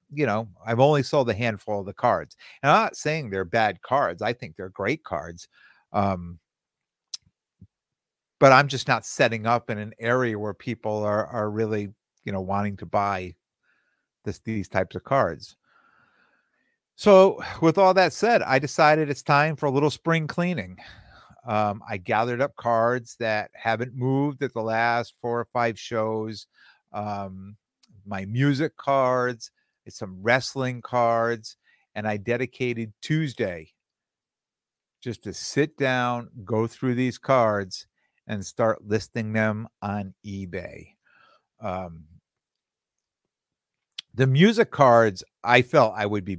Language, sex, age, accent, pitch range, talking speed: English, male, 50-69, American, 105-135 Hz, 140 wpm